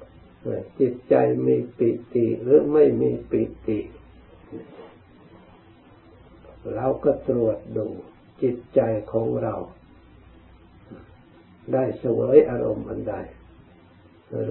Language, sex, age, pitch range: Thai, male, 60-79, 105-135 Hz